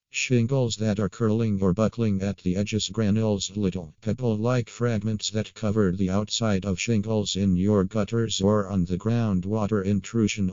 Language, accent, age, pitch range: English, American, 50-69, 95-110 Hz